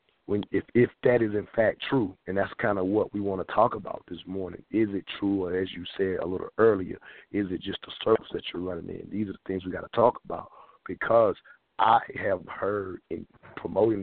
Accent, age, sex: American, 50-69, male